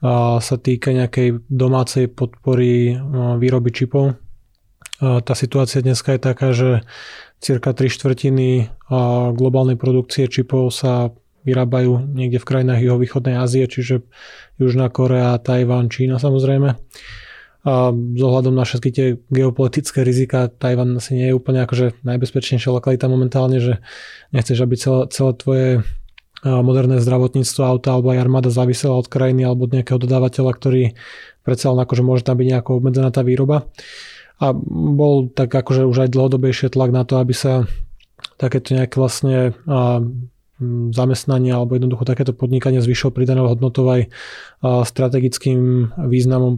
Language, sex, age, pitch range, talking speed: Slovak, male, 20-39, 125-130 Hz, 135 wpm